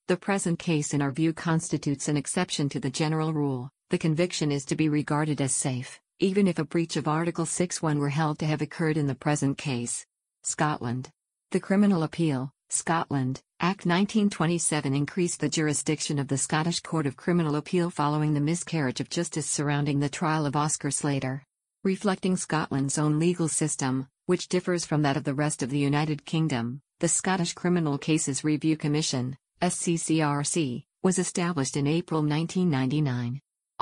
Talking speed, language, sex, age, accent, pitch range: 165 wpm, English, female, 50-69, American, 145-165 Hz